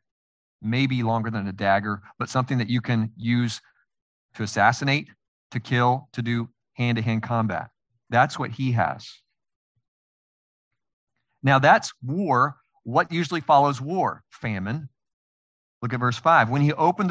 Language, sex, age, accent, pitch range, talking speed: English, male, 40-59, American, 115-170 Hz, 140 wpm